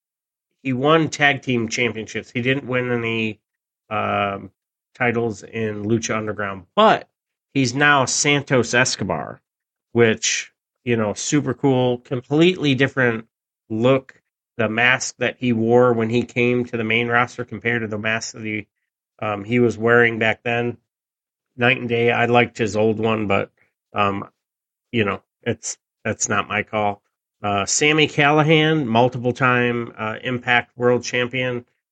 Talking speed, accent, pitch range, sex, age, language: 145 wpm, American, 110-125 Hz, male, 30-49, English